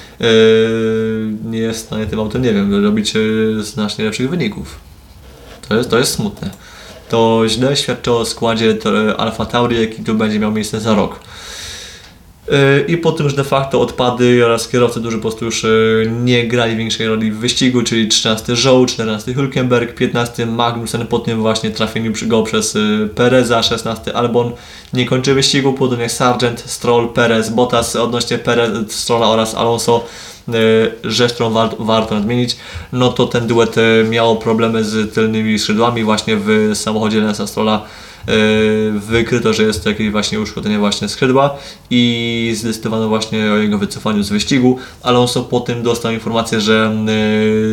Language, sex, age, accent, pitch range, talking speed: Polish, male, 20-39, native, 110-120 Hz, 160 wpm